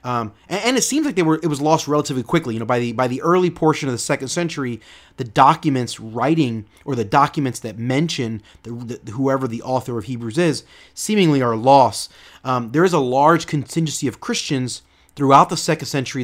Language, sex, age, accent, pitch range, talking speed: English, male, 30-49, American, 120-150 Hz, 205 wpm